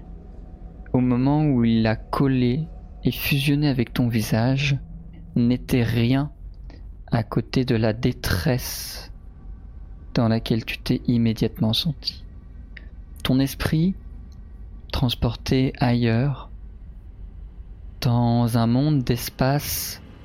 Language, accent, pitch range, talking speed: French, French, 90-140 Hz, 95 wpm